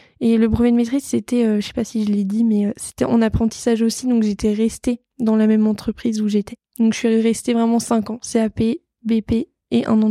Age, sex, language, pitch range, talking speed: 20-39, female, French, 215-240 Hz, 235 wpm